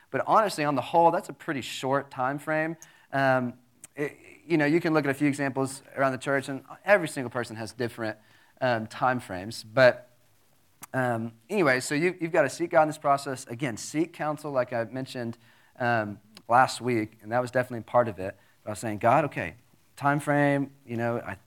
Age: 30-49